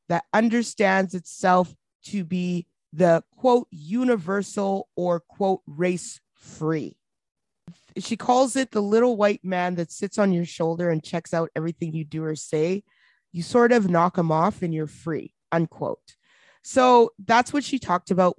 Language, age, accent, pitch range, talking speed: English, 30-49, American, 160-205 Hz, 155 wpm